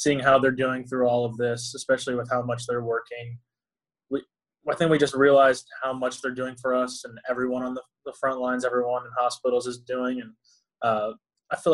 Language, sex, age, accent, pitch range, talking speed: English, male, 20-39, American, 120-140 Hz, 215 wpm